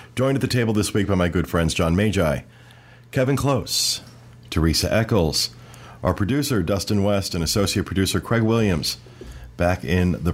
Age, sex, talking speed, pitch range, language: 40-59, male, 165 wpm, 80-100 Hz, English